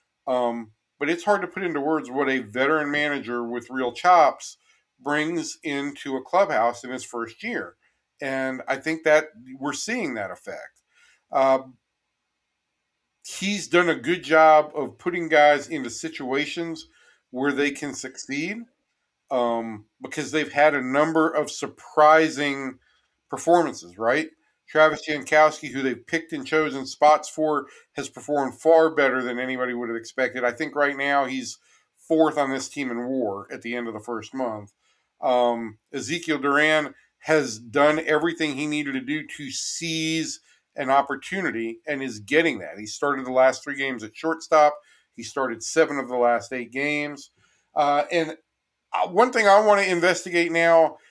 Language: English